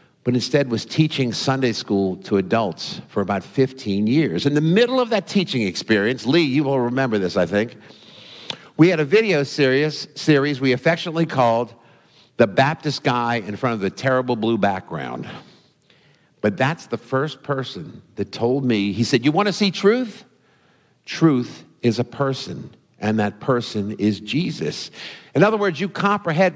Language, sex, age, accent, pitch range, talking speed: English, male, 50-69, American, 120-165 Hz, 165 wpm